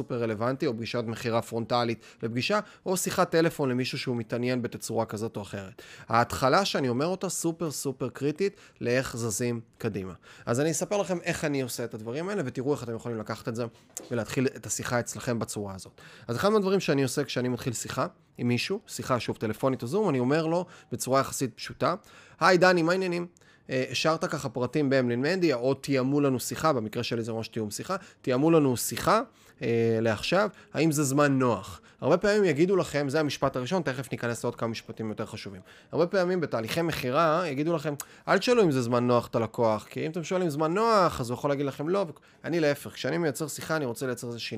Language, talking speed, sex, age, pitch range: Hebrew, 170 wpm, male, 30-49, 120-160 Hz